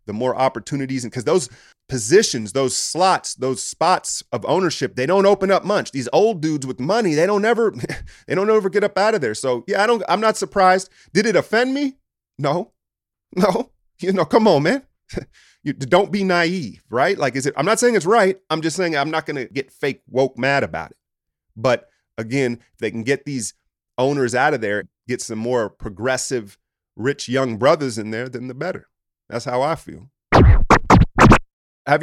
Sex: male